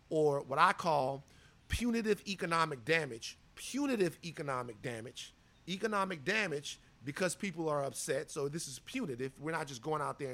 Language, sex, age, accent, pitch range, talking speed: English, male, 30-49, American, 140-195 Hz, 150 wpm